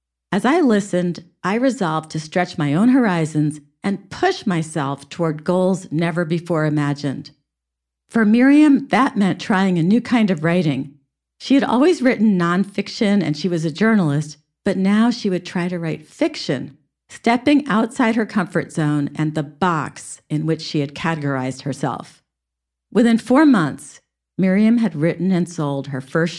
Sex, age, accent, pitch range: female, 50-69, American, 145-215 Hz